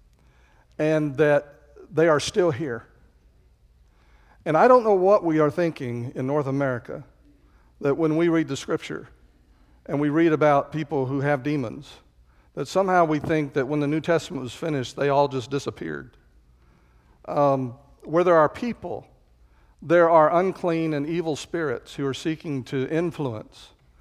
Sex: male